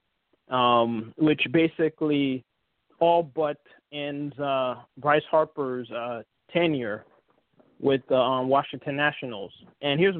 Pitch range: 135-175 Hz